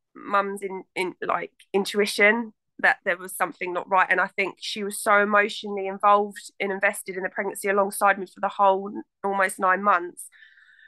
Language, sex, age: English, female, 20-39